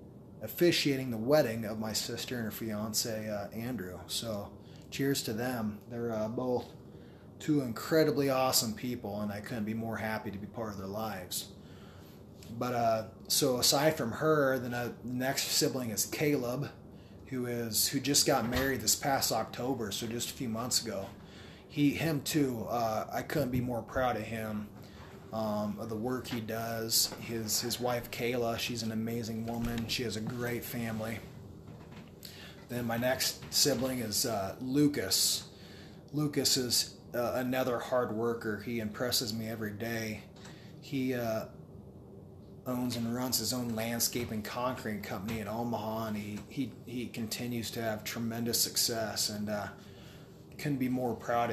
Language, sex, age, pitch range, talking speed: English, male, 30-49, 110-125 Hz, 160 wpm